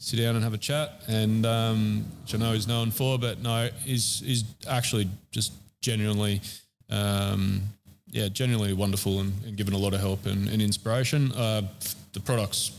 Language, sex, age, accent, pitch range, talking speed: English, male, 20-39, Australian, 105-125 Hz, 180 wpm